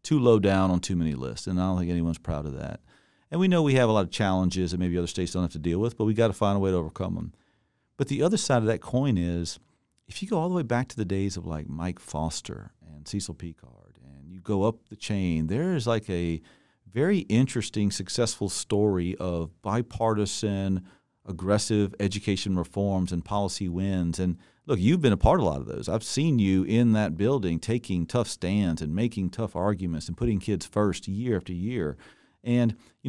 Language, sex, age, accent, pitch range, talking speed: English, male, 40-59, American, 90-115 Hz, 225 wpm